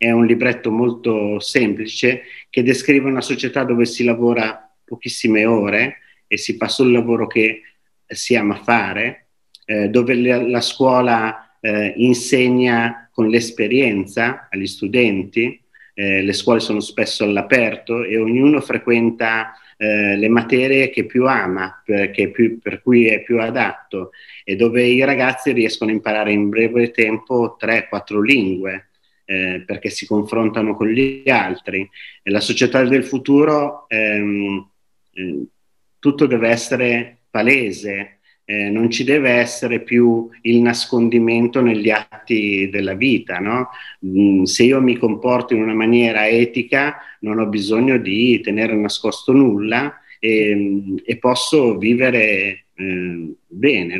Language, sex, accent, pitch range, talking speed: Italian, male, native, 105-125 Hz, 130 wpm